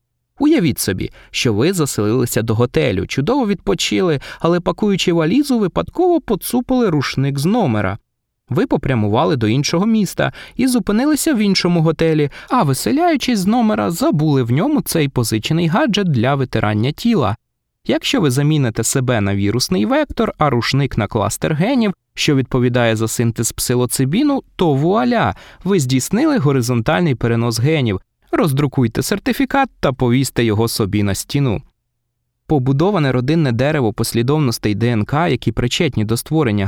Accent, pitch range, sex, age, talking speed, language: native, 115-175 Hz, male, 20-39, 135 wpm, Ukrainian